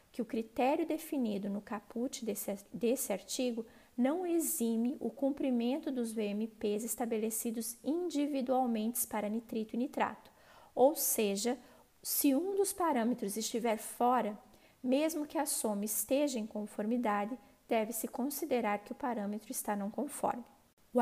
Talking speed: 130 wpm